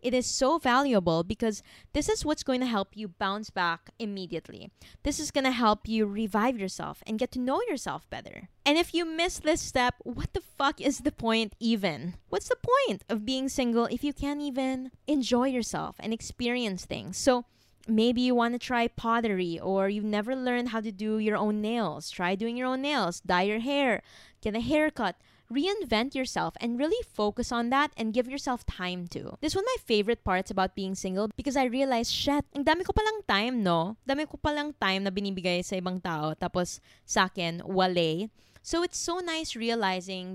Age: 20-39